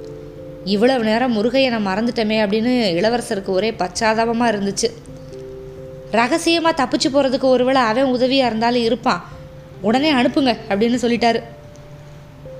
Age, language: 20-39, Tamil